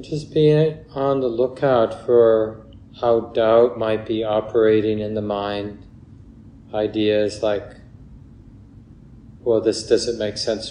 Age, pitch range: 40-59, 110-120 Hz